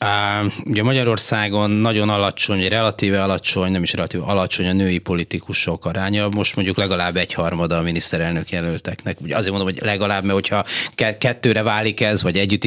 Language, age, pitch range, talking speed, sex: Hungarian, 30-49, 90-105 Hz, 160 wpm, male